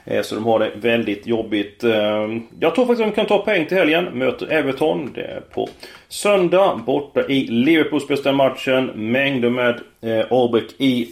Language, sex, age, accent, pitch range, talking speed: Swedish, male, 30-49, native, 115-160 Hz, 165 wpm